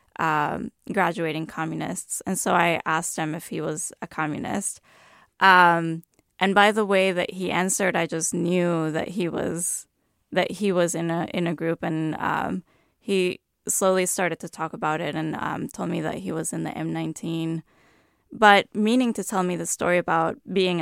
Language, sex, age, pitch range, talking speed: English, female, 20-39, 165-190 Hz, 180 wpm